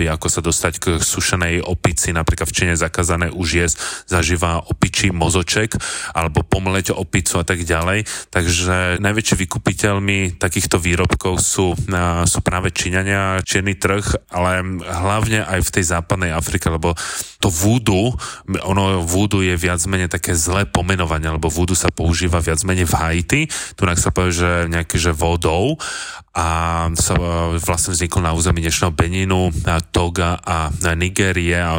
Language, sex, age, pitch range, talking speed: Slovak, male, 20-39, 85-95 Hz, 145 wpm